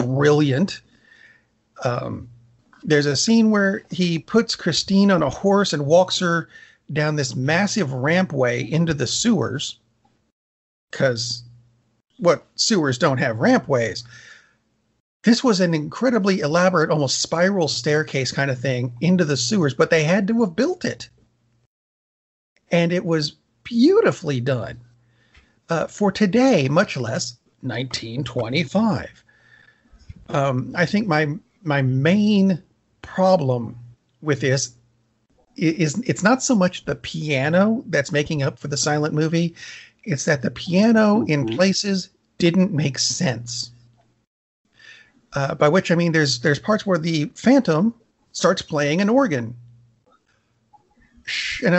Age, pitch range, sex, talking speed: 40-59, 130-195 Hz, male, 125 wpm